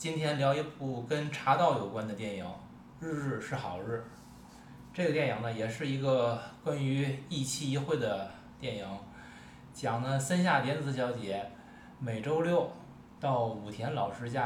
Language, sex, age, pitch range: Chinese, male, 20-39, 115-145 Hz